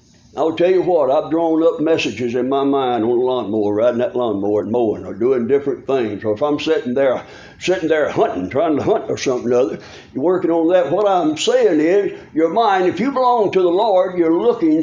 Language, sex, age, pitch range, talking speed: English, male, 60-79, 140-210 Hz, 220 wpm